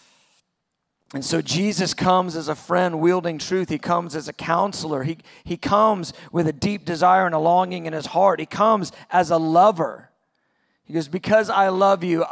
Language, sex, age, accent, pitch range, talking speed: English, male, 40-59, American, 165-200 Hz, 185 wpm